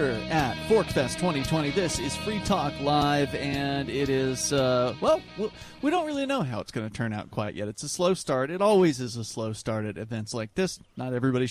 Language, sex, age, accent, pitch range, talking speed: English, male, 30-49, American, 115-155 Hz, 215 wpm